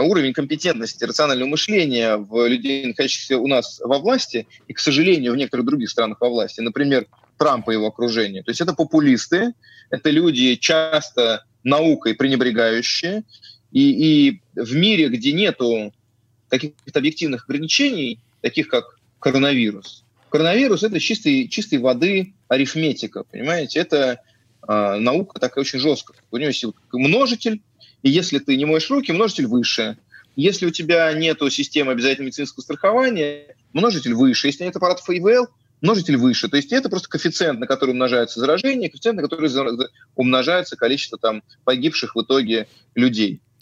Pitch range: 120-170 Hz